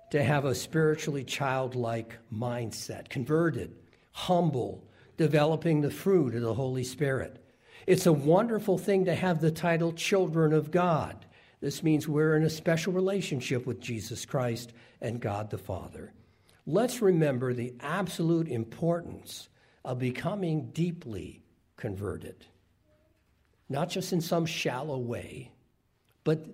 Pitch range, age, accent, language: 115-160 Hz, 60-79, American, English